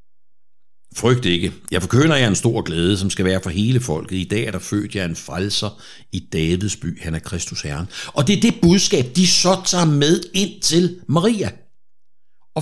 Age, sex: 60-79, male